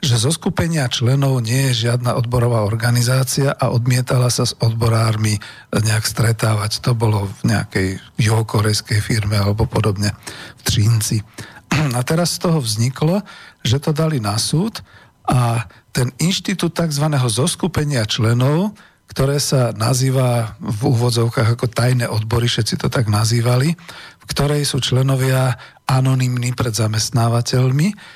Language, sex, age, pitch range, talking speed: Slovak, male, 40-59, 115-135 Hz, 130 wpm